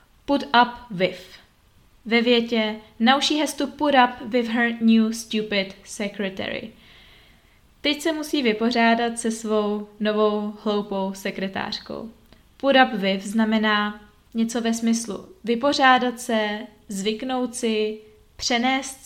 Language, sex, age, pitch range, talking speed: Czech, female, 20-39, 210-240 Hz, 115 wpm